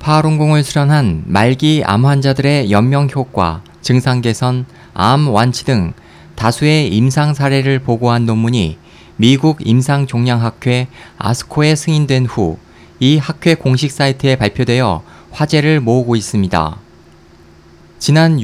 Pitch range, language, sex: 120-150 Hz, Korean, male